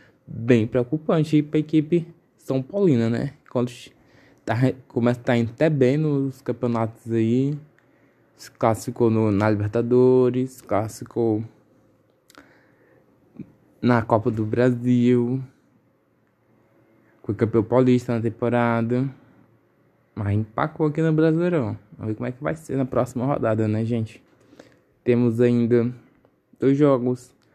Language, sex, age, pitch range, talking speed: Portuguese, male, 20-39, 115-140 Hz, 125 wpm